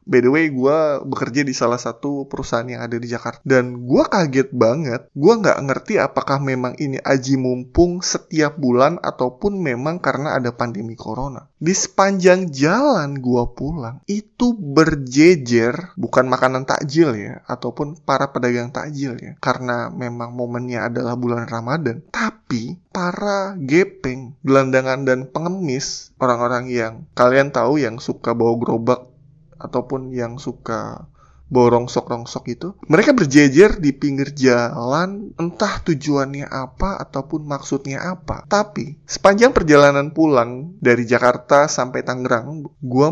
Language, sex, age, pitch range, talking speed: Indonesian, male, 20-39, 125-165 Hz, 135 wpm